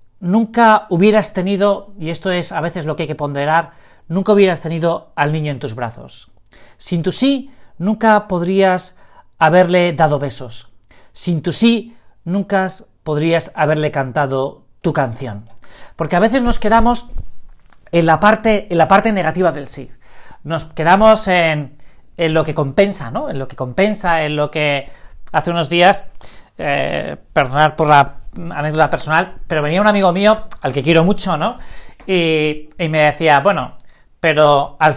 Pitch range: 145-195 Hz